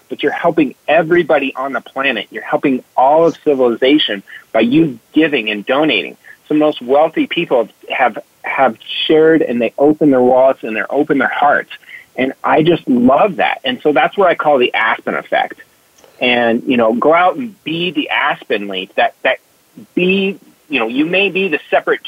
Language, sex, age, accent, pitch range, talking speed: English, male, 30-49, American, 145-190 Hz, 190 wpm